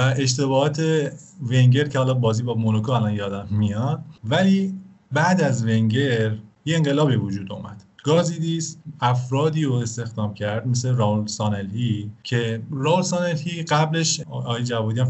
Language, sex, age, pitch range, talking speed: Persian, male, 30-49, 115-150 Hz, 130 wpm